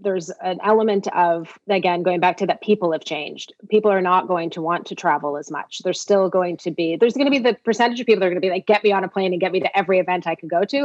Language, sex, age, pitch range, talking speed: English, female, 30-49, 170-205 Hz, 310 wpm